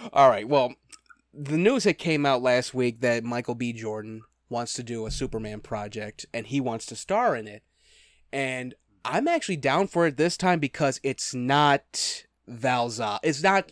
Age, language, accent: 20-39, English, American